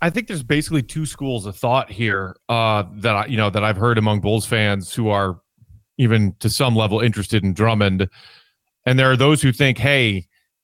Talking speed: 205 wpm